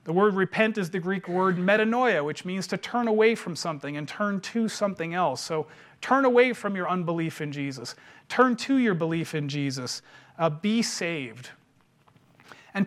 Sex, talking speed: male, 175 wpm